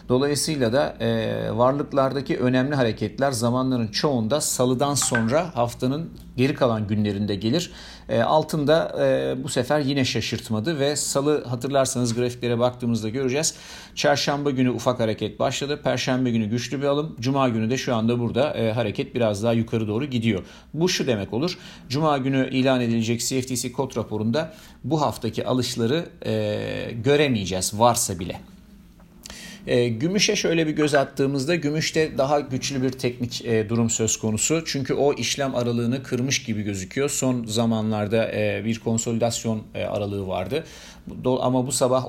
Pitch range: 115-140 Hz